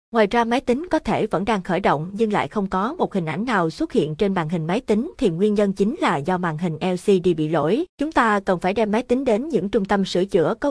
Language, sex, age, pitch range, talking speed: Vietnamese, female, 20-39, 175-230 Hz, 280 wpm